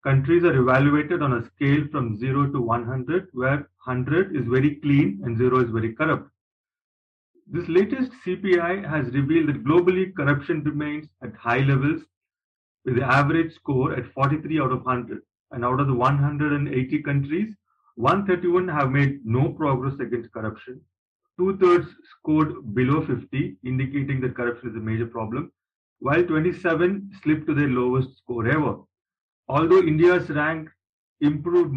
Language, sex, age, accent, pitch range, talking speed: English, male, 30-49, Indian, 125-160 Hz, 145 wpm